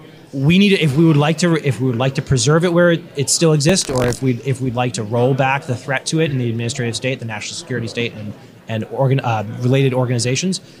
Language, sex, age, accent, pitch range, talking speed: English, male, 20-39, American, 125-160 Hz, 245 wpm